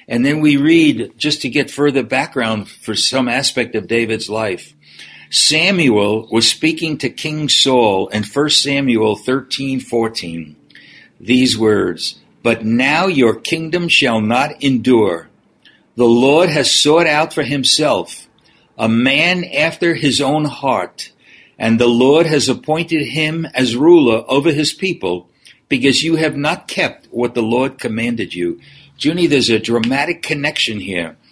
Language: English